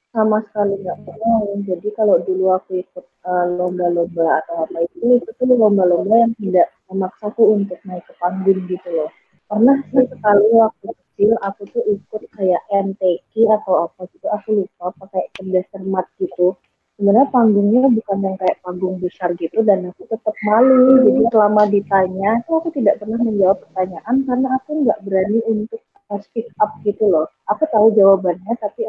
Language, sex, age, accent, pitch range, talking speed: Indonesian, female, 20-39, native, 190-230 Hz, 160 wpm